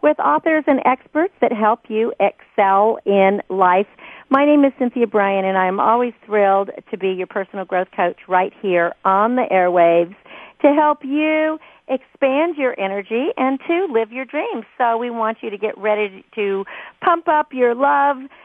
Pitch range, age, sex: 195-255 Hz, 50-69, female